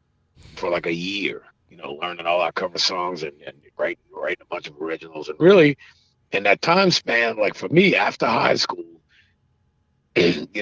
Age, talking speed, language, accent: 50-69, 175 wpm, English, American